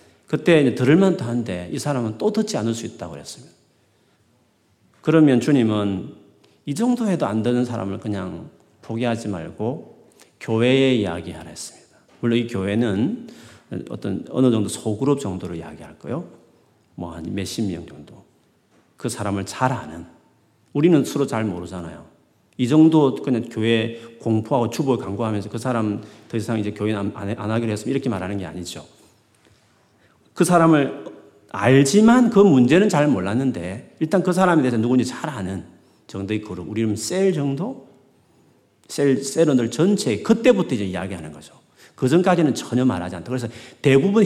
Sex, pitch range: male, 100-150 Hz